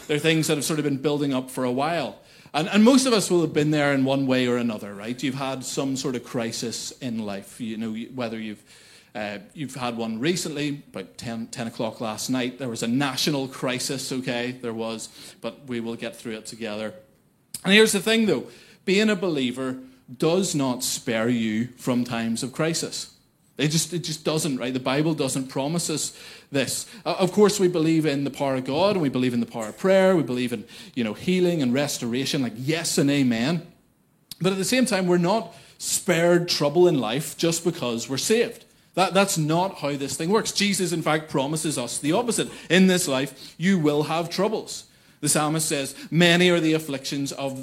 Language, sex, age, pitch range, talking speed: English, male, 30-49, 130-170 Hz, 210 wpm